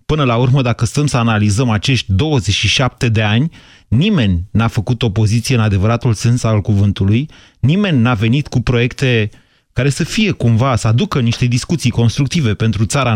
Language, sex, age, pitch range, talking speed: Romanian, male, 30-49, 115-155 Hz, 165 wpm